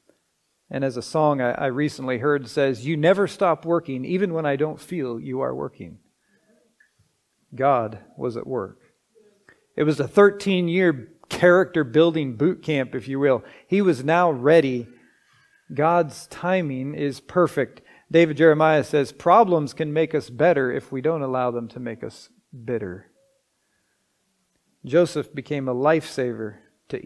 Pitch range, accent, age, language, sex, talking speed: 135-175 Hz, American, 40-59, English, male, 145 wpm